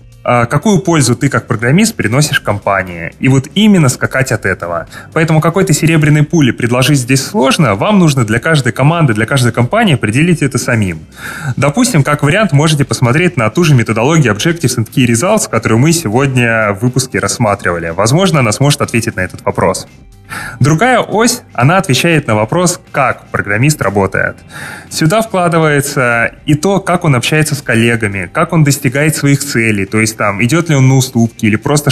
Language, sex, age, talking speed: Russian, male, 20-39, 170 wpm